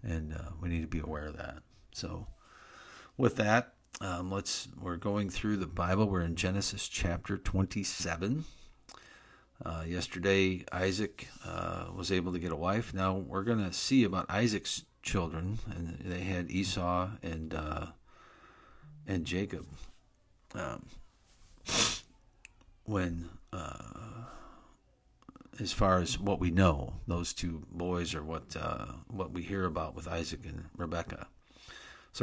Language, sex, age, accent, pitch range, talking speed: English, male, 50-69, American, 85-100 Hz, 140 wpm